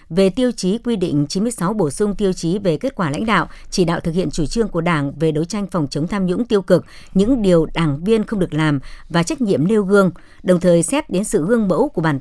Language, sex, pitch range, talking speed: Vietnamese, male, 165-215 Hz, 260 wpm